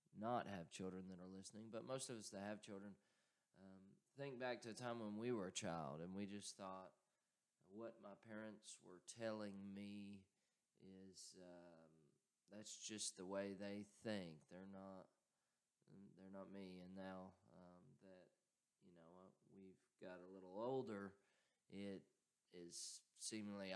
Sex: male